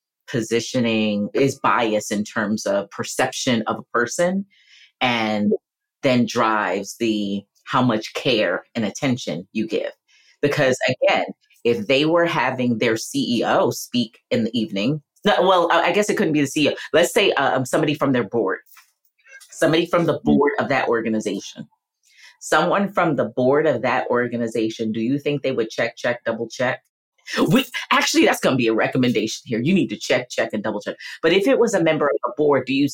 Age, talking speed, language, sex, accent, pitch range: 30-49, 180 wpm, English, female, American, 120-150 Hz